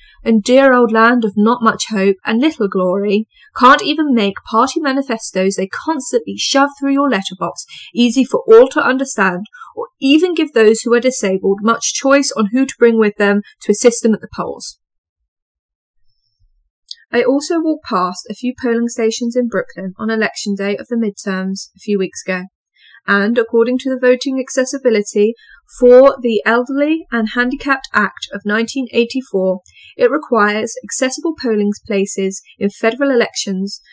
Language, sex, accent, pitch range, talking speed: English, female, British, 200-255 Hz, 160 wpm